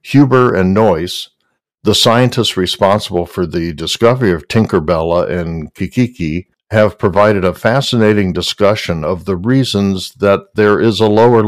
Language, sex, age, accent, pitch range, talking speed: English, male, 60-79, American, 90-115 Hz, 135 wpm